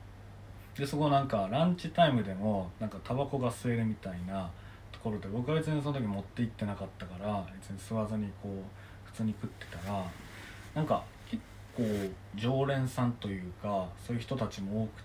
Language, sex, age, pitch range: Japanese, male, 20-39, 100-120 Hz